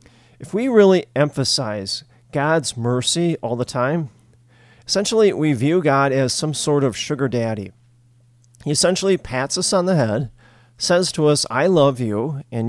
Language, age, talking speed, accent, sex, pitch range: English, 40-59, 155 wpm, American, male, 120-150 Hz